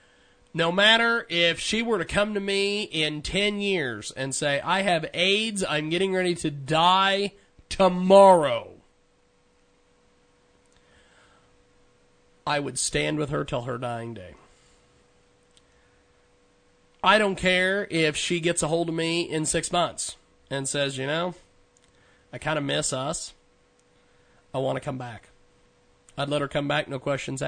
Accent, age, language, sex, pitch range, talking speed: American, 40-59, English, male, 115-165 Hz, 145 wpm